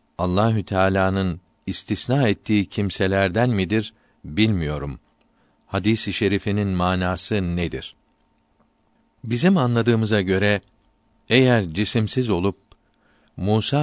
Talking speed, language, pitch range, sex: 80 wpm, Turkish, 95-110 Hz, male